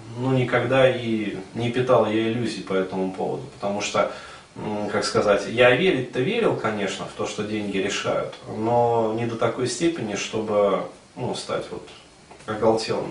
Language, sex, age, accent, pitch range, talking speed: Russian, male, 30-49, native, 110-135 Hz, 155 wpm